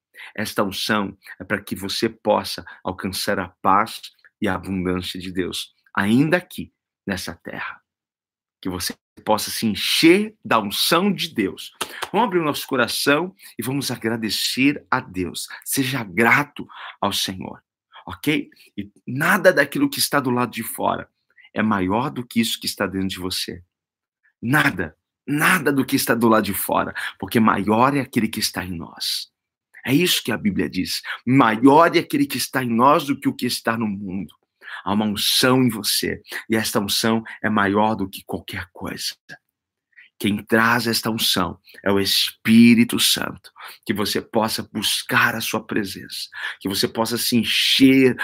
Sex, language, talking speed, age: male, Portuguese, 165 wpm, 50-69